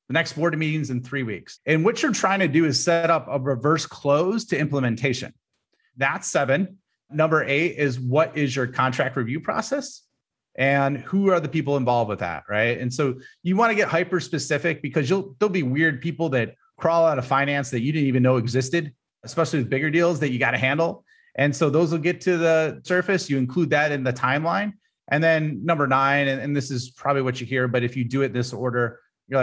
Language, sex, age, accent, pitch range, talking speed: English, male, 30-49, American, 125-160 Hz, 220 wpm